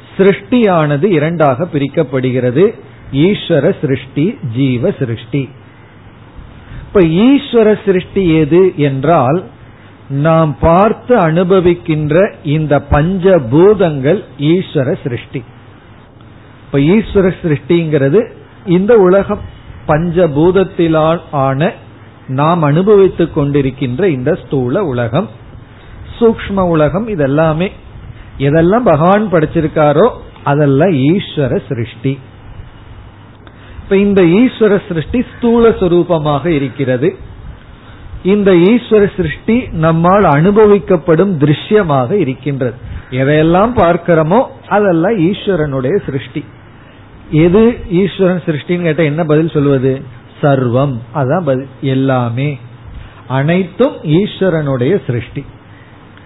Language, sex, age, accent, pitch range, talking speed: Tamil, male, 50-69, native, 130-185 Hz, 55 wpm